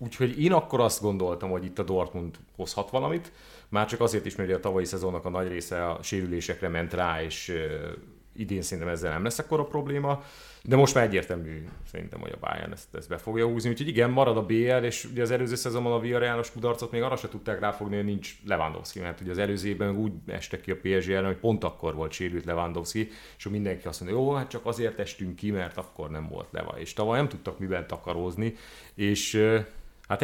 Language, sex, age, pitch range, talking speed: Hungarian, male, 30-49, 90-115 Hz, 215 wpm